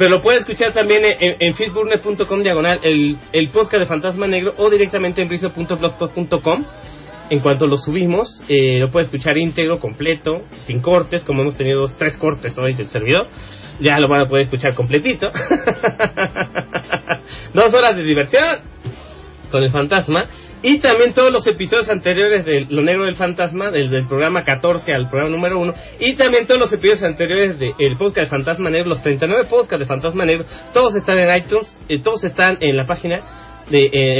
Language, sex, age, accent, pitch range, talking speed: English, male, 30-49, Mexican, 150-205 Hz, 185 wpm